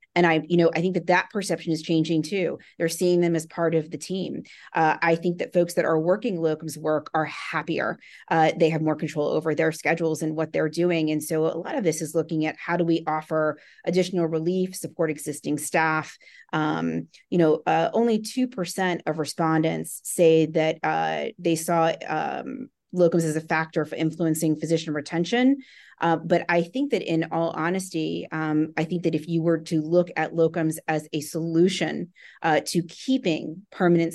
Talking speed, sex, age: 195 wpm, female, 30-49